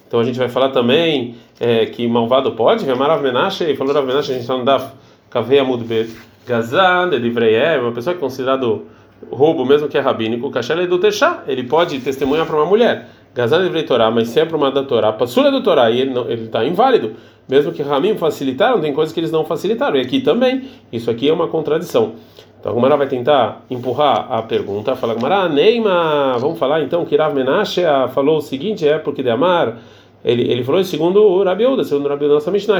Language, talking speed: Portuguese, 210 wpm